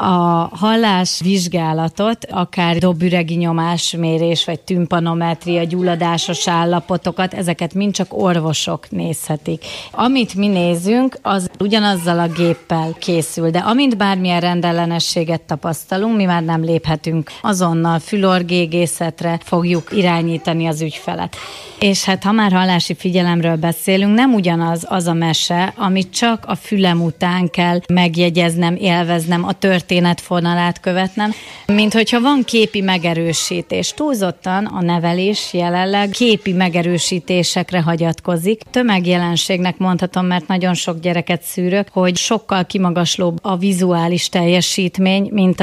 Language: Hungarian